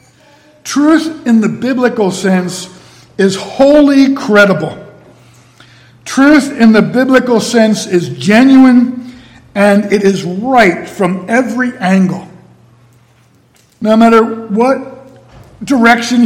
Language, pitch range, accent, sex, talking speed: English, 165-230 Hz, American, male, 95 wpm